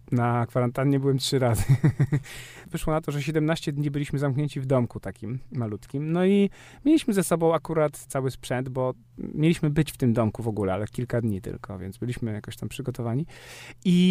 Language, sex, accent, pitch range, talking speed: Polish, male, native, 120-165 Hz, 185 wpm